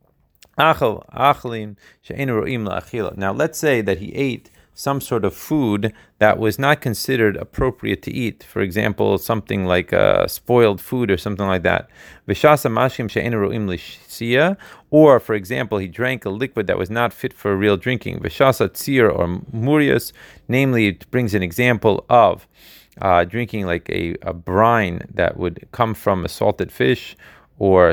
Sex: male